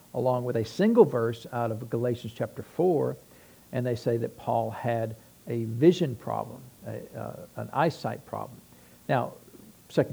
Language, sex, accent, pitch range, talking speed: English, male, American, 110-140 Hz, 155 wpm